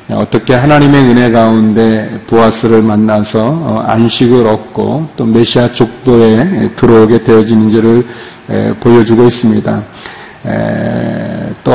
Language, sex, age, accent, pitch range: Korean, male, 40-59, native, 110-125 Hz